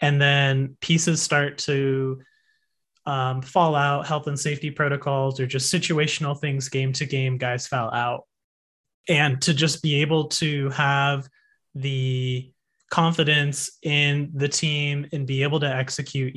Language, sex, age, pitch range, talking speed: English, male, 20-39, 130-150 Hz, 145 wpm